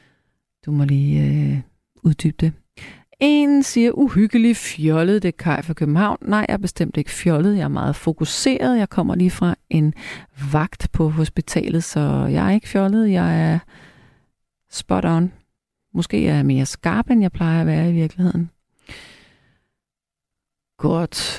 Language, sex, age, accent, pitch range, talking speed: Danish, female, 40-59, native, 155-220 Hz, 155 wpm